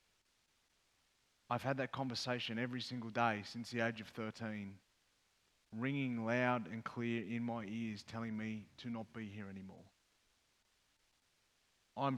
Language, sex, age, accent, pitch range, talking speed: English, male, 30-49, Australian, 115-135 Hz, 135 wpm